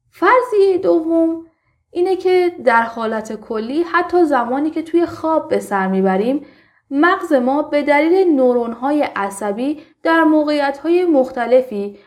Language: Persian